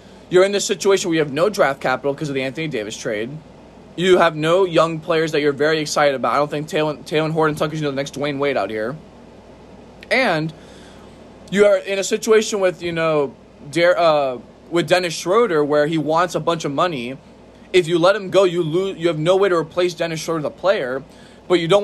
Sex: male